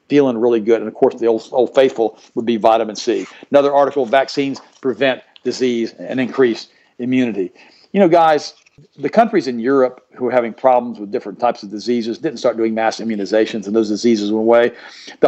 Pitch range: 115-145 Hz